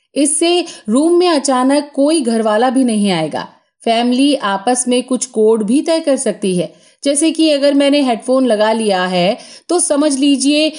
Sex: female